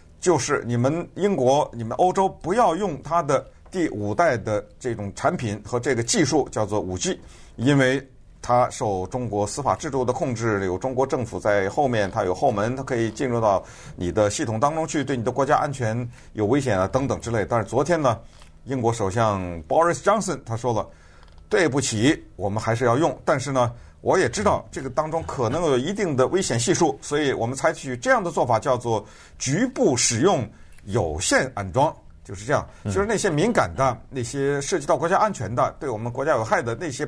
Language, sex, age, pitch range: Chinese, male, 50-69, 110-160 Hz